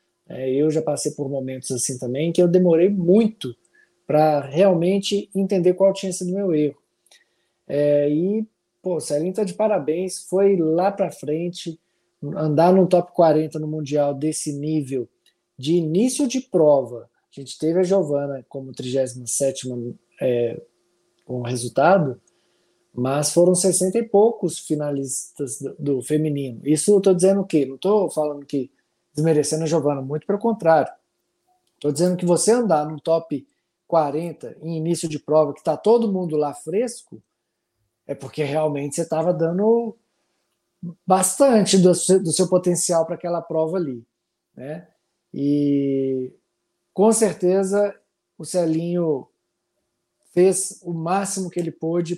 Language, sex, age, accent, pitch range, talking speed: Portuguese, male, 20-39, Brazilian, 145-180 Hz, 145 wpm